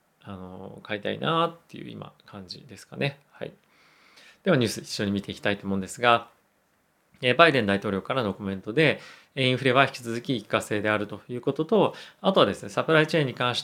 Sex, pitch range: male, 105-140 Hz